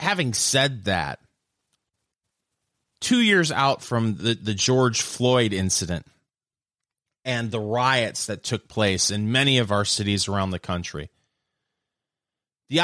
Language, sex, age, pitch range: English, male, 30-49, 110-150 Hz